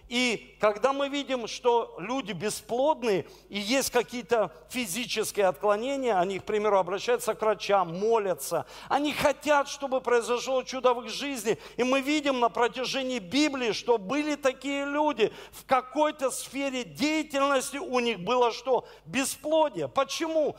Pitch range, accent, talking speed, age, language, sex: 225-270 Hz, native, 135 wpm, 50-69, Russian, male